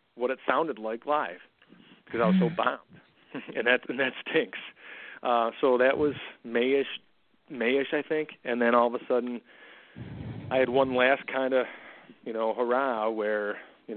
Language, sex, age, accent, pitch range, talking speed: English, male, 30-49, American, 110-125 Hz, 170 wpm